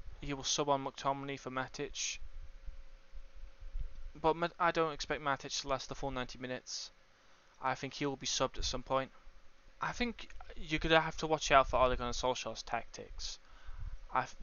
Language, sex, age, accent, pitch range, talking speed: English, male, 20-39, British, 120-155 Hz, 170 wpm